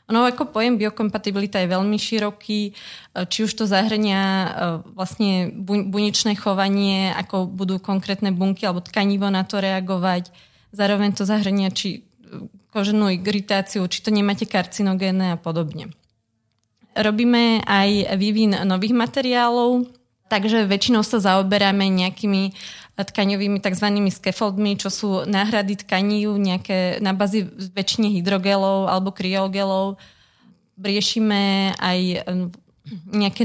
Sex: female